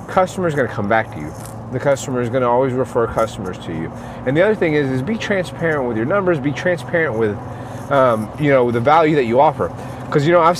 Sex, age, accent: male, 30-49, American